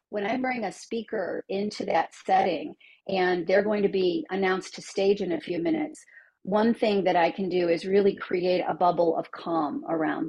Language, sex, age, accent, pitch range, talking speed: English, female, 40-59, American, 175-215 Hz, 200 wpm